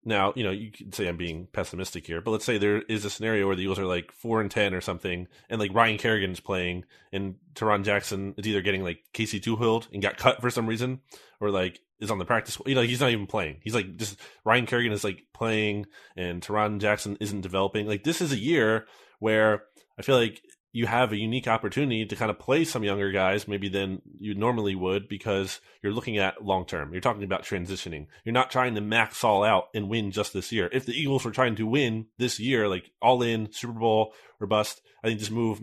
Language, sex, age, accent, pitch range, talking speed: English, male, 20-39, American, 100-115 Hz, 230 wpm